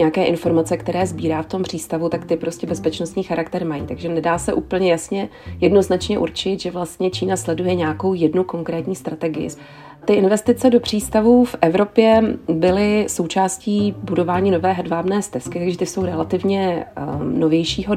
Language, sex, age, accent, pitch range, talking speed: Czech, female, 30-49, native, 165-190 Hz, 150 wpm